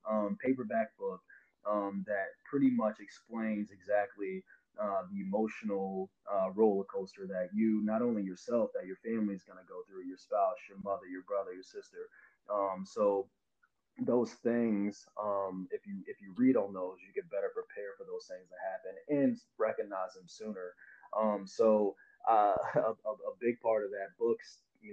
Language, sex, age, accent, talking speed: English, male, 20-39, American, 175 wpm